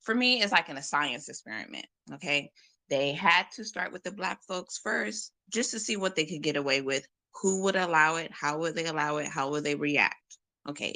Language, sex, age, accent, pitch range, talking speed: English, female, 20-39, American, 145-215 Hz, 225 wpm